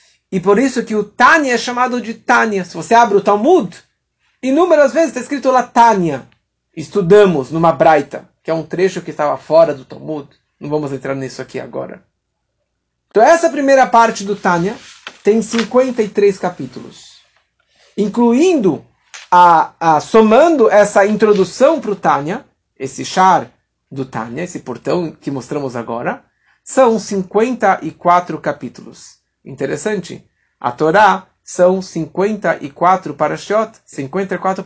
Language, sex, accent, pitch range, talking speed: Portuguese, male, Brazilian, 155-220 Hz, 130 wpm